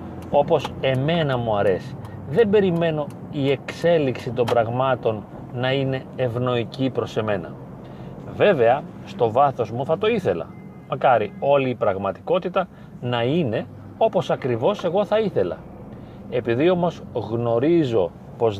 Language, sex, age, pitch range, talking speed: Greek, male, 30-49, 120-170 Hz, 120 wpm